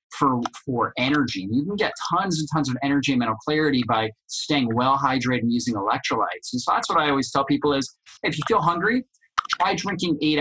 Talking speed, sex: 215 wpm, male